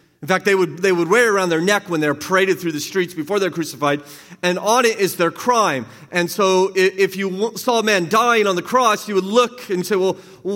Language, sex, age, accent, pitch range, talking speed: English, male, 40-59, American, 125-185 Hz, 245 wpm